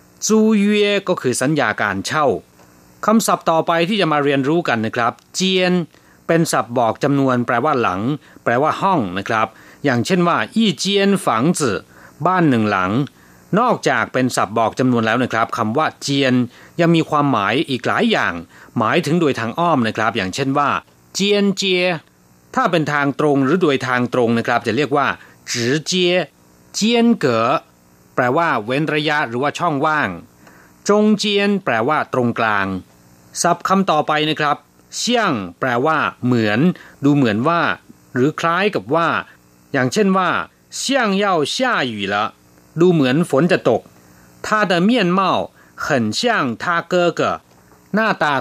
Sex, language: male, Thai